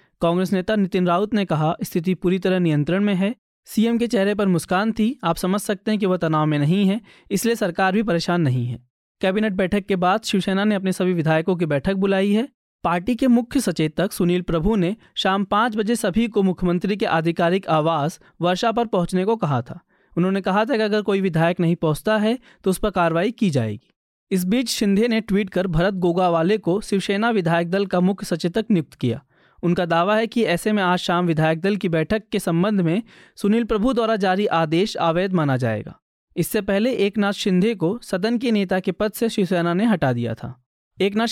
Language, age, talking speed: Hindi, 20-39, 205 wpm